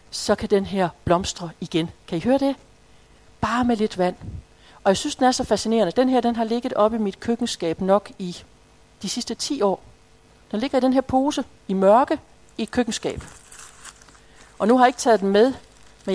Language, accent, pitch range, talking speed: Danish, native, 180-235 Hz, 210 wpm